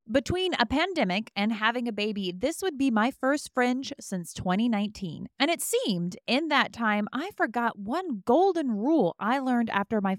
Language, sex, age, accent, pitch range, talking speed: English, female, 30-49, American, 195-275 Hz, 175 wpm